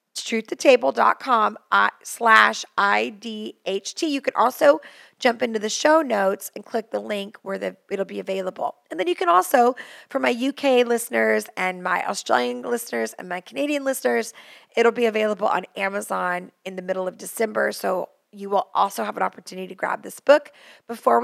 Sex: female